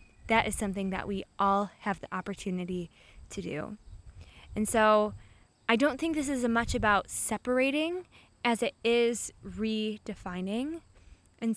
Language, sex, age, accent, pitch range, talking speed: English, female, 20-39, American, 200-255 Hz, 140 wpm